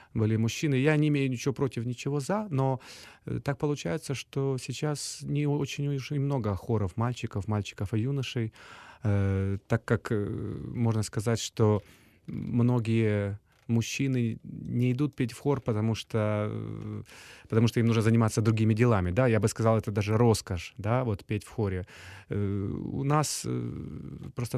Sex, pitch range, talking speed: male, 105-130 Hz, 140 wpm